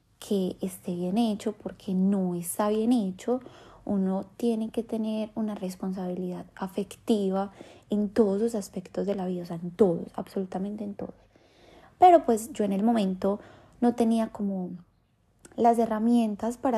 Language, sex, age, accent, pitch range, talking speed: Spanish, female, 20-39, Colombian, 195-240 Hz, 150 wpm